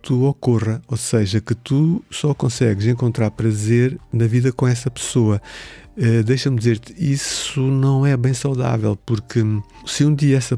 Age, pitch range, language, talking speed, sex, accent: 50-69, 105-125 Hz, Portuguese, 155 wpm, male, Brazilian